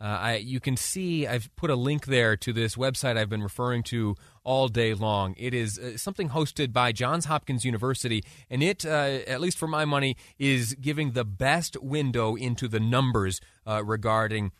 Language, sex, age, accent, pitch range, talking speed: English, male, 30-49, American, 110-135 Hz, 190 wpm